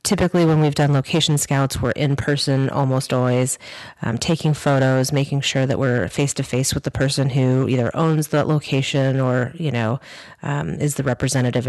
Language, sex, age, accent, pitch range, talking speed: English, female, 30-49, American, 130-150 Hz, 185 wpm